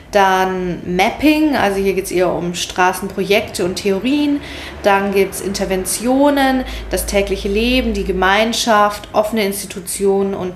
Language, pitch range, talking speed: German, 195-245 Hz, 130 wpm